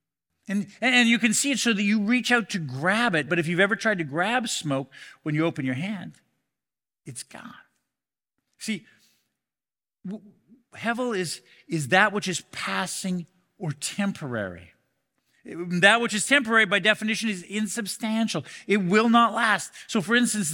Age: 50-69